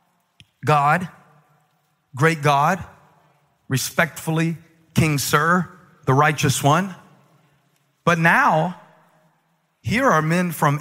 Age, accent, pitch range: 40-59, American, 150-215 Hz